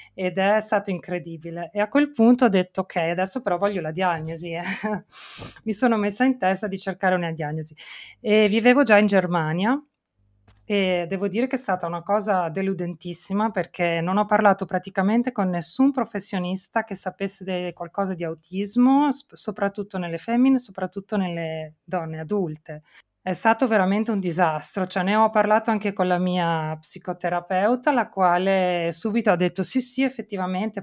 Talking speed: 160 wpm